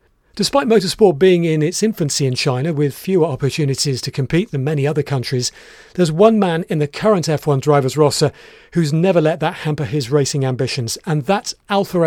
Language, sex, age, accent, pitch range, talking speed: English, male, 40-59, British, 140-175 Hz, 185 wpm